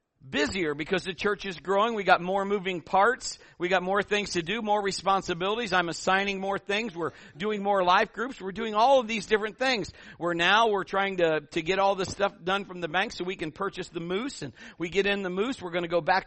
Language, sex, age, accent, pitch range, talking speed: English, male, 50-69, American, 175-235 Hz, 245 wpm